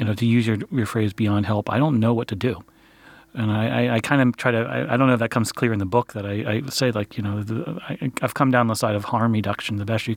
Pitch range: 105-120 Hz